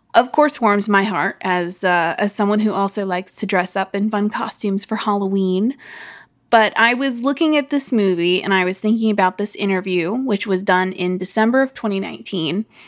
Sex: female